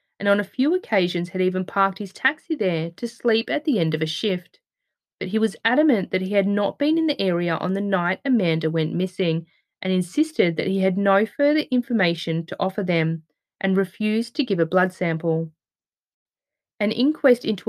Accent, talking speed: Australian, 195 wpm